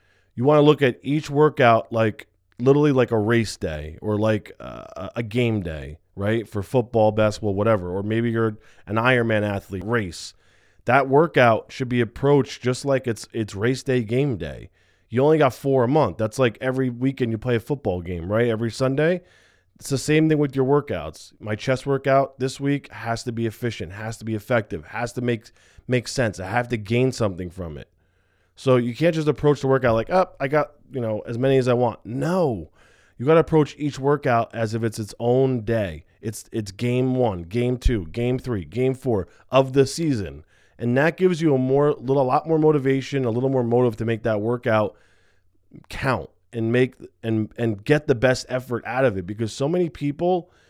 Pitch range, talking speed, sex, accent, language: 110-135 Hz, 205 wpm, male, American, English